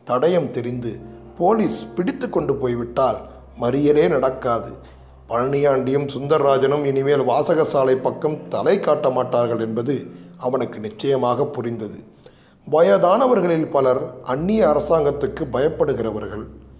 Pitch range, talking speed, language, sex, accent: 115-160 Hz, 90 wpm, Tamil, male, native